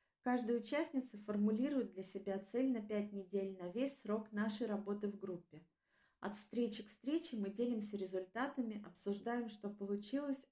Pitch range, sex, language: 195-250 Hz, female, Russian